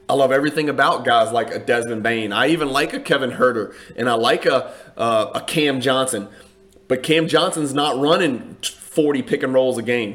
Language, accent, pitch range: English, American, 125-160 Hz